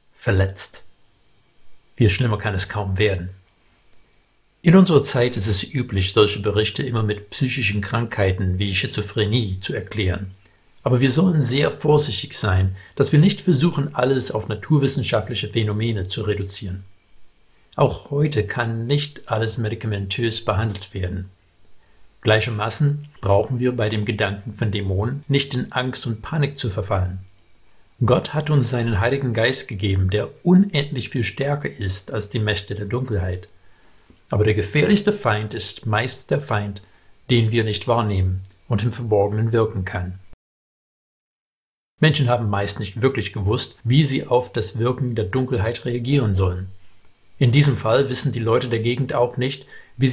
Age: 60-79